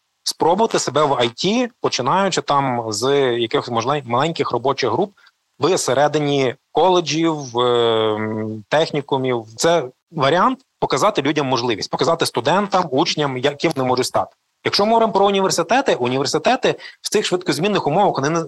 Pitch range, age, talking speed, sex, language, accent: 130-180 Hz, 30-49, 125 wpm, male, Ukrainian, native